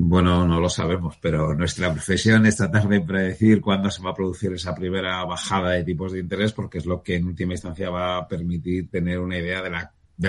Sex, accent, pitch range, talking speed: male, Spanish, 80-100 Hz, 225 wpm